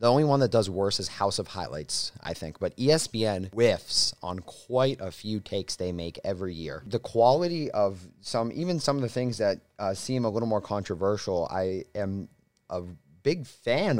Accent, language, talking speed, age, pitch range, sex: American, English, 195 wpm, 30-49, 100-125 Hz, male